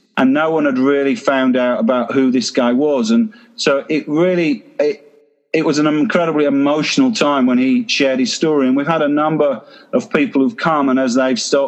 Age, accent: 40-59, British